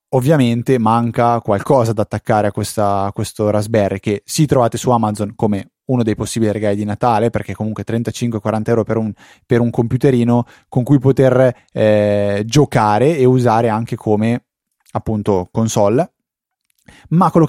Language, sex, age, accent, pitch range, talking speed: Italian, male, 20-39, native, 105-130 Hz, 145 wpm